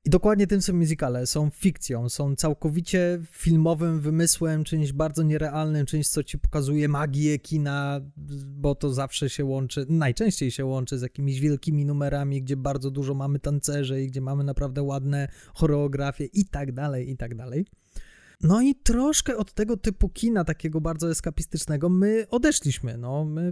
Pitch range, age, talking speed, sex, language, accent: 140-175 Hz, 20-39, 150 wpm, male, Polish, native